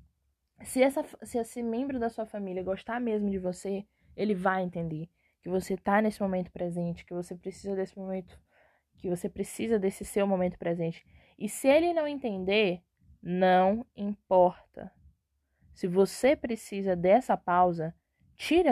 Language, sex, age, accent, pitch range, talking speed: Portuguese, female, 10-29, Brazilian, 185-235 Hz, 145 wpm